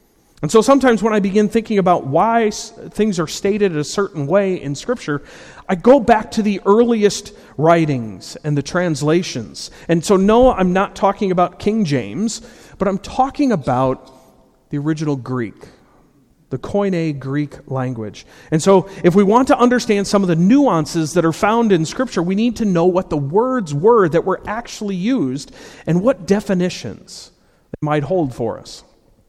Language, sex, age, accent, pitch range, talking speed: English, male, 40-59, American, 155-215 Hz, 170 wpm